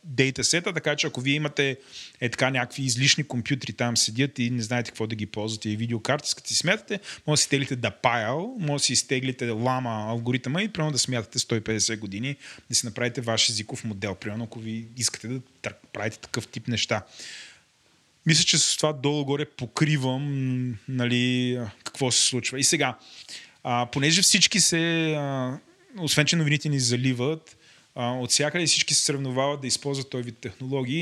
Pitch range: 120-150 Hz